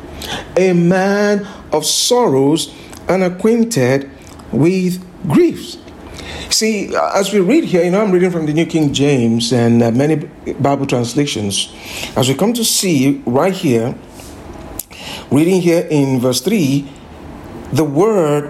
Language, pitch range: English, 150-215 Hz